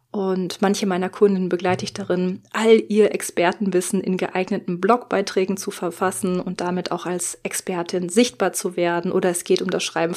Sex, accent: female, German